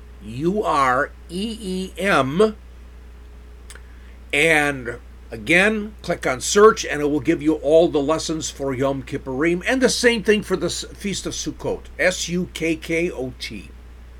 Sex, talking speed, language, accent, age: male, 115 wpm, English, American, 50-69